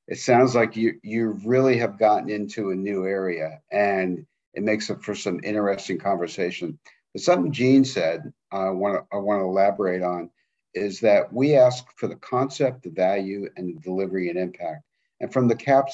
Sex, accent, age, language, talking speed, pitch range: male, American, 50-69, English, 185 wpm, 95-120 Hz